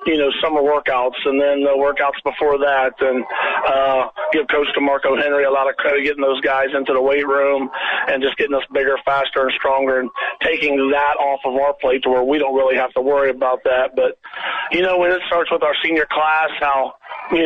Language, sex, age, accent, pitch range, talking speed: English, male, 40-59, American, 145-170 Hz, 220 wpm